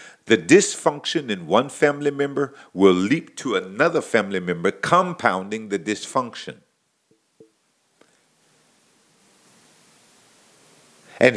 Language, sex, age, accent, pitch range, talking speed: English, male, 50-69, American, 100-150 Hz, 85 wpm